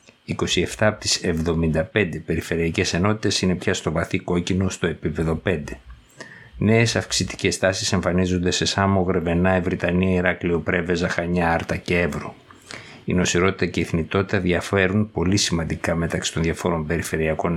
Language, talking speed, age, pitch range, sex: Greek, 135 wpm, 60-79, 85-95 Hz, male